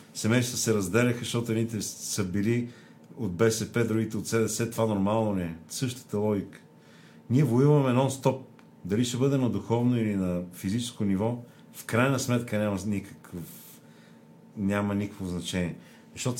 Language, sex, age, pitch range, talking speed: Bulgarian, male, 40-59, 100-125 Hz, 145 wpm